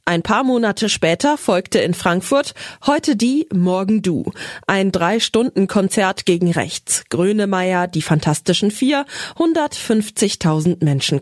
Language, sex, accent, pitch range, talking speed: German, female, German, 170-225 Hz, 110 wpm